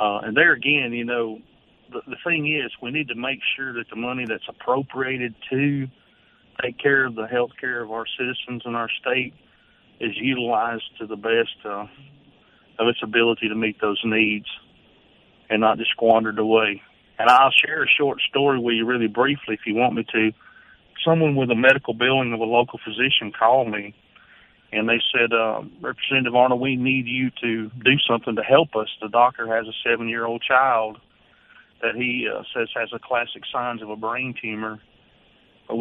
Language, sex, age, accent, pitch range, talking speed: English, male, 40-59, American, 110-130 Hz, 185 wpm